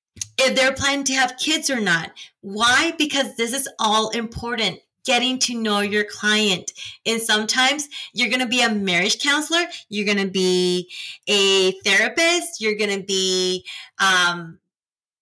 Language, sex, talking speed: English, female, 140 wpm